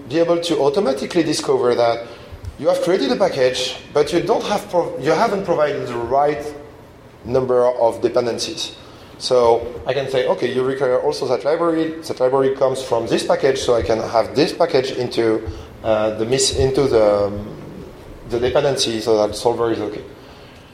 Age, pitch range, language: 30-49, 120-165 Hz, English